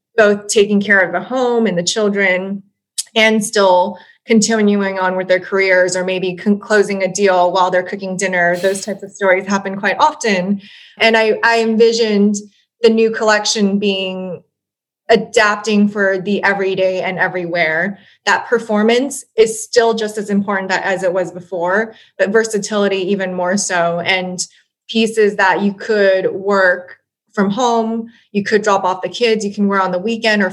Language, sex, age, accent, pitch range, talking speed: English, female, 20-39, American, 185-210 Hz, 165 wpm